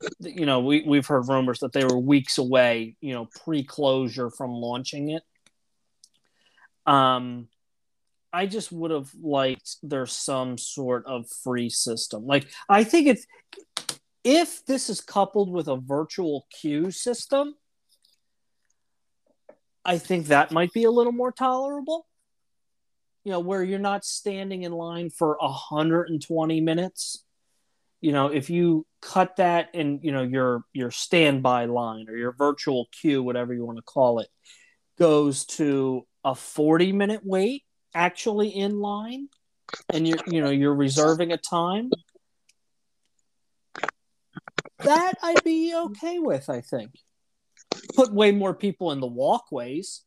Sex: male